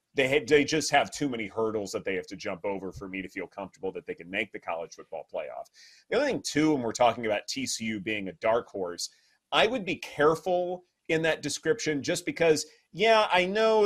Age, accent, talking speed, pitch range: 30-49, American, 225 wpm, 110-155 Hz